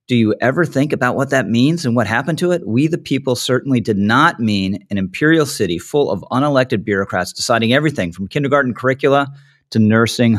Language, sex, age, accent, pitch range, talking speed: English, male, 40-59, American, 110-140 Hz, 195 wpm